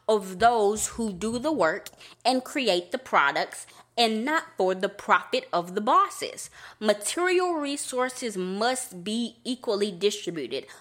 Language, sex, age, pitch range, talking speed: English, female, 20-39, 185-270 Hz, 135 wpm